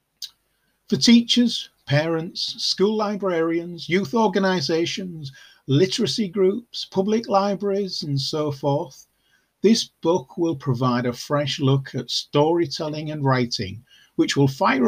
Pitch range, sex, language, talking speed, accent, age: 120-165 Hz, male, English, 115 wpm, British, 40-59